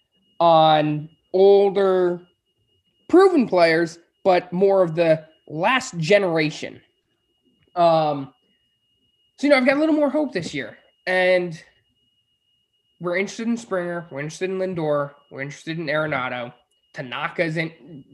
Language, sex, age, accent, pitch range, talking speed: English, male, 20-39, American, 150-195 Hz, 120 wpm